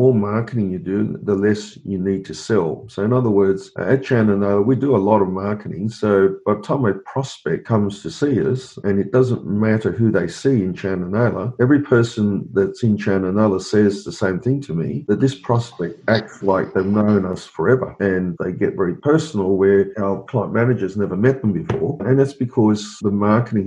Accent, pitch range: Australian, 95-120 Hz